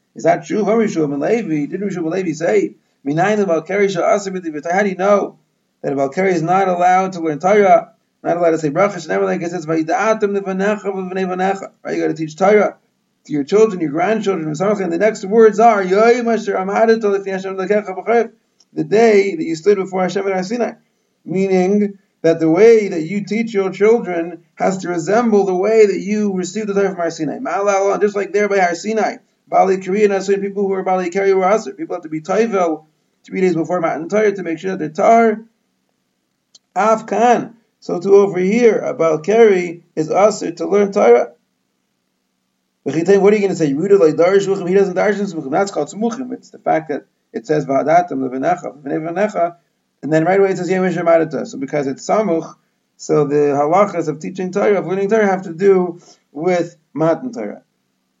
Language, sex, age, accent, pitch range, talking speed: English, male, 30-49, American, 165-205 Hz, 175 wpm